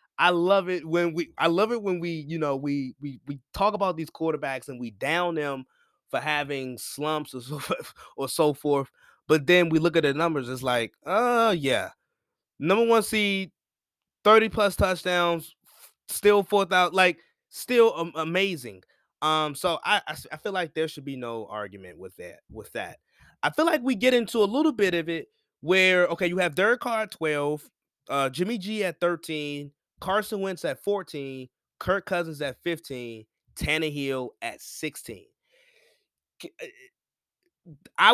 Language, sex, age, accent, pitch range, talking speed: English, male, 20-39, American, 145-195 Hz, 170 wpm